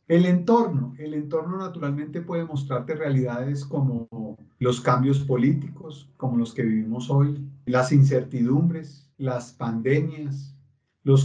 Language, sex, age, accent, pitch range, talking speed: Spanish, male, 40-59, Colombian, 140-180 Hz, 115 wpm